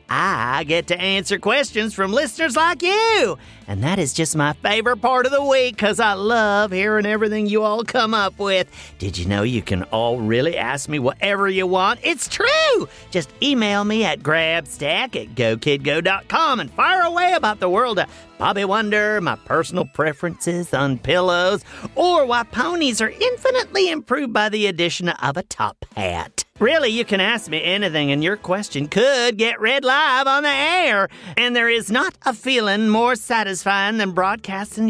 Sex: male